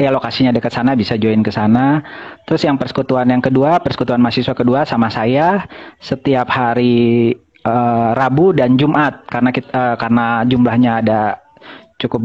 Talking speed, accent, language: 150 wpm, native, Indonesian